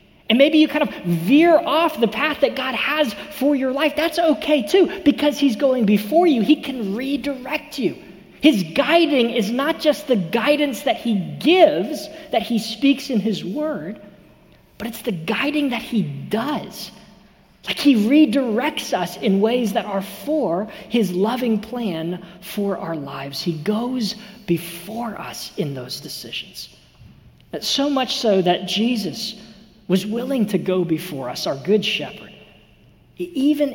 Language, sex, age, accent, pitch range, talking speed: English, male, 40-59, American, 170-250 Hz, 155 wpm